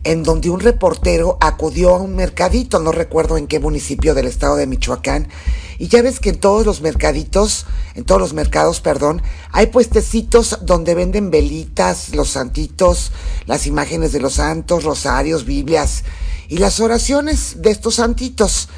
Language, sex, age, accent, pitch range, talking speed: Spanish, male, 40-59, Mexican, 140-215 Hz, 160 wpm